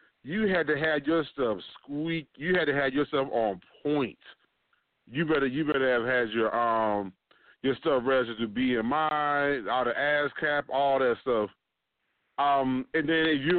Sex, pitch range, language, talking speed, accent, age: male, 125-160 Hz, English, 170 wpm, American, 30-49